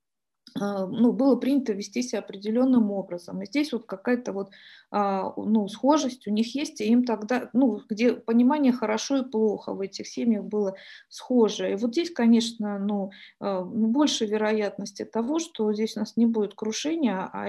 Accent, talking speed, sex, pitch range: native, 165 wpm, female, 210-255 Hz